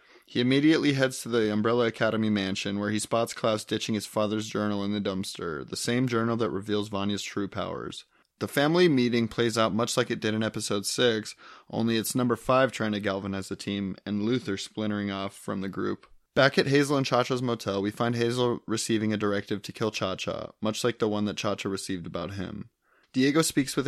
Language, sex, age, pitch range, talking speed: English, male, 20-39, 100-120 Hz, 205 wpm